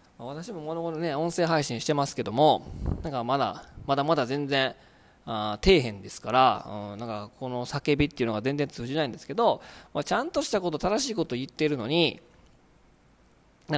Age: 20-39